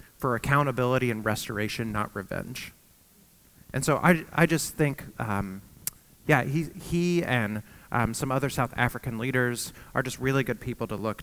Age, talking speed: 30-49, 160 wpm